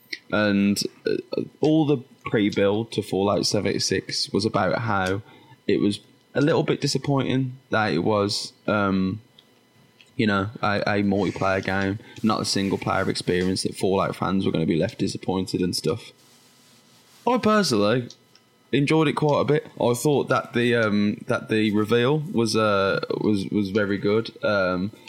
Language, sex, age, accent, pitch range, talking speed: English, male, 10-29, British, 95-115 Hz, 165 wpm